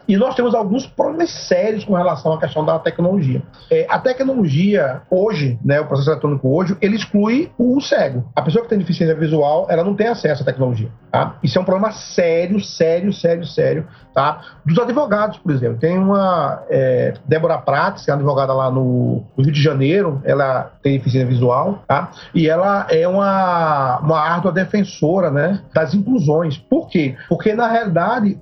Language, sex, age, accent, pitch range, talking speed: Portuguese, male, 40-59, Brazilian, 155-220 Hz, 165 wpm